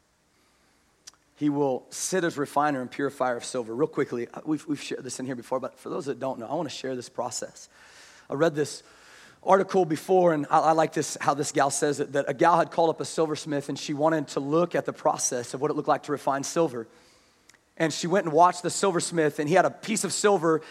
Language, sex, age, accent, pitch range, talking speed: English, male, 30-49, American, 160-240 Hz, 240 wpm